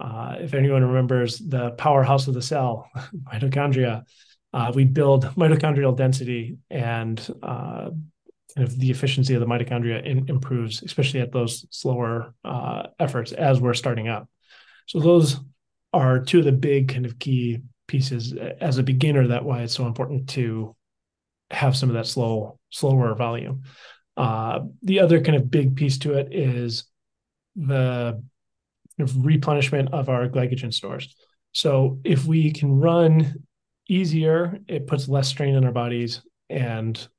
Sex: male